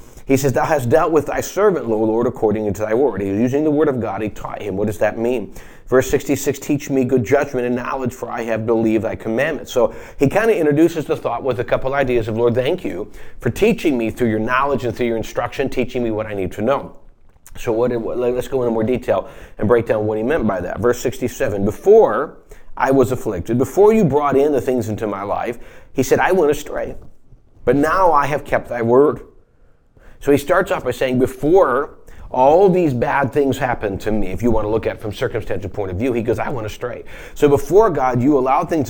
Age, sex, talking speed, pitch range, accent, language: 30-49, male, 240 wpm, 115-140 Hz, American, English